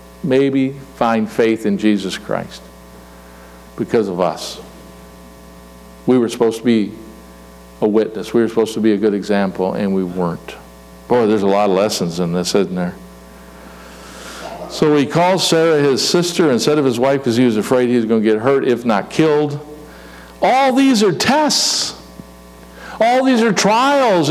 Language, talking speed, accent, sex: English, 170 wpm, American, male